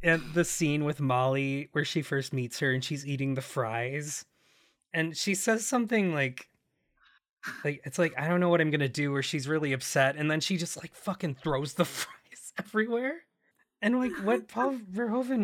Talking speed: 190 wpm